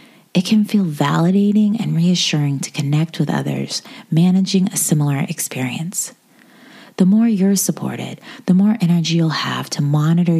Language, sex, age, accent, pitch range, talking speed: English, female, 30-49, American, 155-215 Hz, 145 wpm